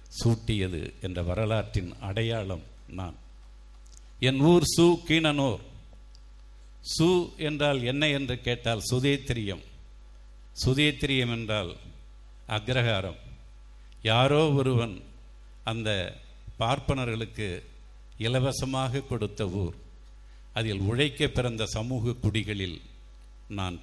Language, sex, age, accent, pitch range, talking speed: Tamil, male, 50-69, native, 90-120 Hz, 75 wpm